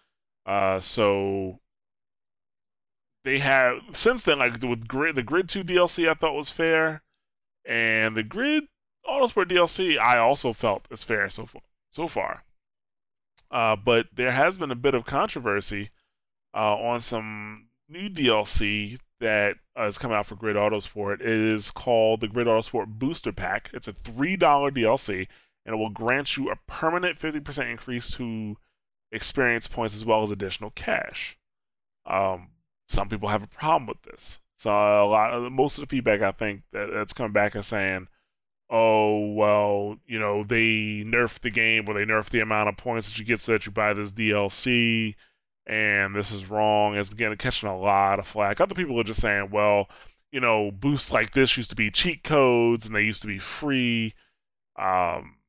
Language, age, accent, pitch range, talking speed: English, 20-39, American, 105-125 Hz, 180 wpm